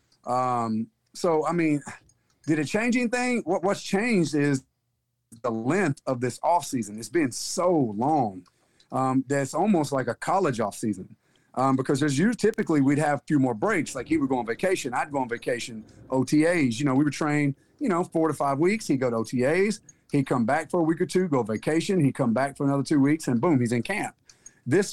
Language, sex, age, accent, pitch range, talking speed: English, male, 40-59, American, 125-155 Hz, 215 wpm